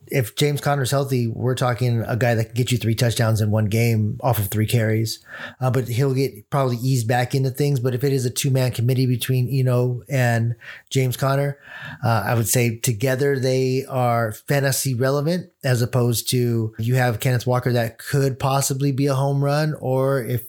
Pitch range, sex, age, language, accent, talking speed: 120-135 Hz, male, 30-49, English, American, 200 wpm